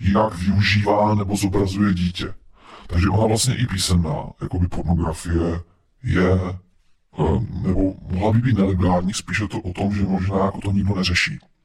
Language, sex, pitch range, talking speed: Czech, female, 90-110 Hz, 150 wpm